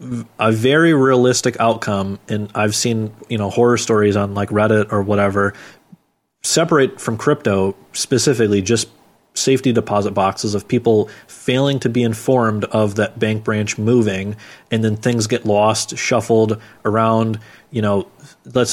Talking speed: 145 wpm